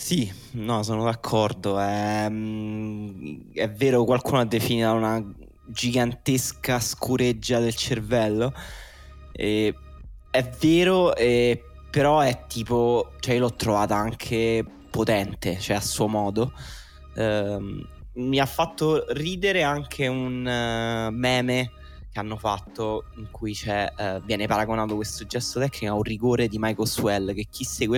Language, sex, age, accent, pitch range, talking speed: Italian, male, 20-39, native, 105-125 Hz, 125 wpm